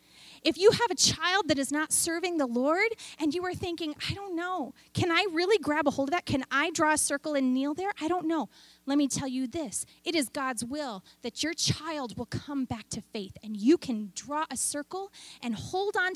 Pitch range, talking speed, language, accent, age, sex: 245-325 Hz, 235 wpm, English, American, 30-49, female